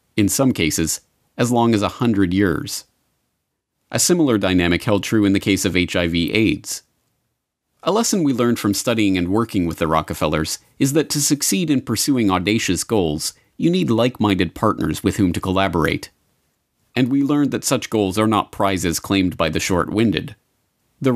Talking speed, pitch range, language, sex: 170 wpm, 85-115 Hz, English, male